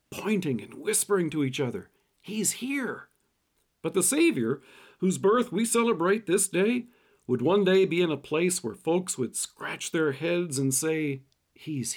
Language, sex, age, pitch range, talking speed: English, male, 50-69, 150-205 Hz, 165 wpm